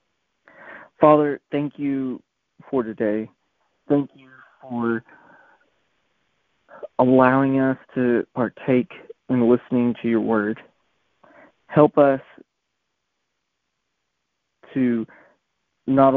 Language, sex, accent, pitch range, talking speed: English, male, American, 115-135 Hz, 80 wpm